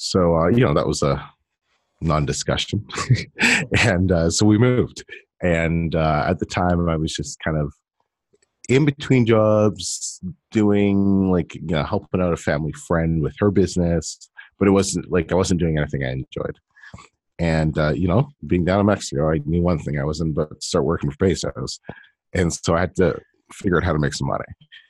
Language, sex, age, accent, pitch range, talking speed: English, male, 30-49, American, 75-95 Hz, 190 wpm